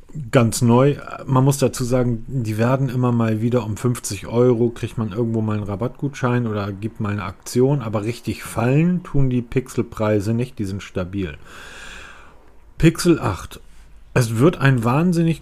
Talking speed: 160 wpm